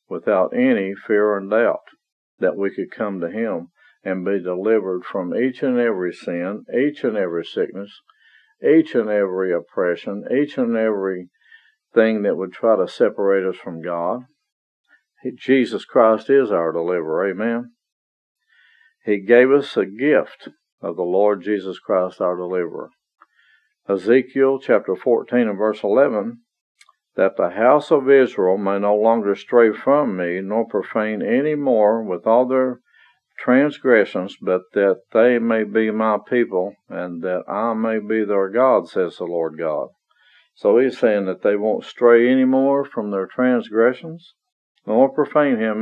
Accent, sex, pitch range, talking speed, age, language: American, male, 95-130 Hz, 150 wpm, 50-69, English